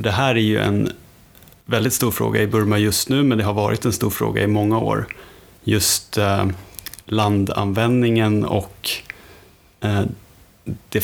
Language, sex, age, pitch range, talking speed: Swedish, male, 30-49, 100-110 Hz, 140 wpm